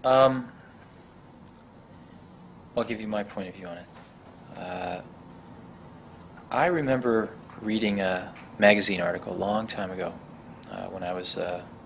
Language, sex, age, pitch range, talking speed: English, male, 30-49, 100-135 Hz, 130 wpm